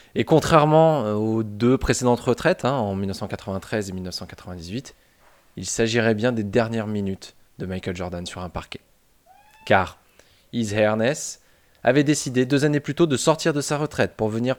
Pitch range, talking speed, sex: 95-125 Hz, 160 wpm, male